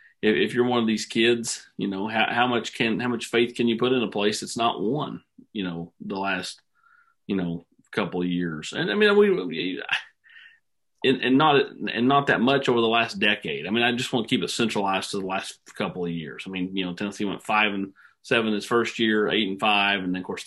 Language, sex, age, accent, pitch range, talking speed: English, male, 40-59, American, 95-110 Hz, 235 wpm